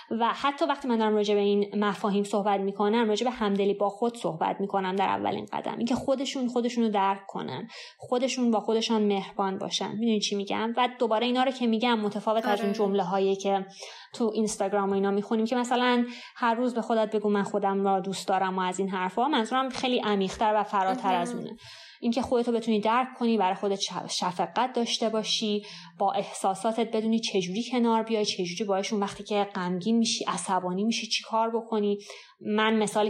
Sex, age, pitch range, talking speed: female, 20-39, 195-230 Hz, 185 wpm